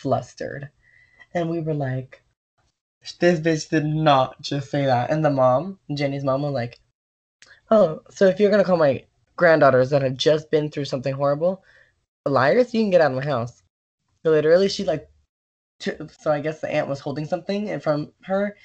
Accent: American